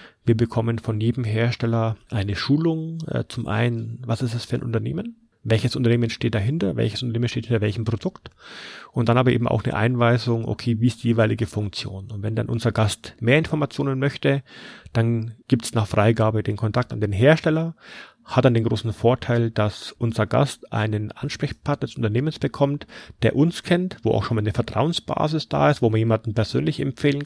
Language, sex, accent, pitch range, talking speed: German, male, German, 115-130 Hz, 185 wpm